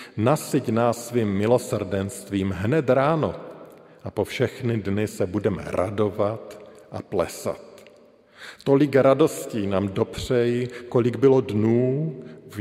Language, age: Slovak, 50-69